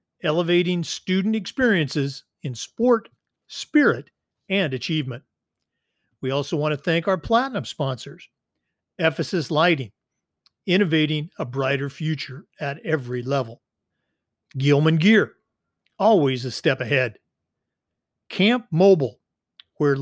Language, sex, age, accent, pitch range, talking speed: English, male, 50-69, American, 140-190 Hz, 100 wpm